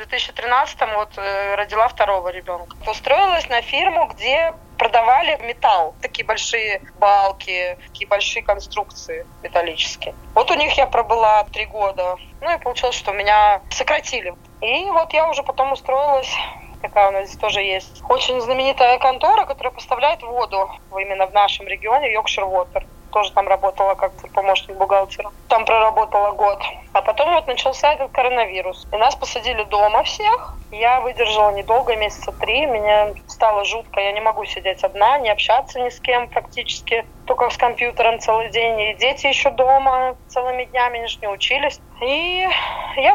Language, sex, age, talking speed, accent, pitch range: Russian, female, 20-39, 150 wpm, native, 205-265 Hz